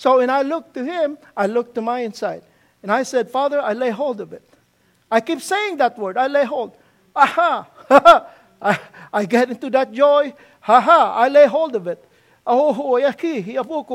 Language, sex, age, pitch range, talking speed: English, male, 50-69, 235-295 Hz, 180 wpm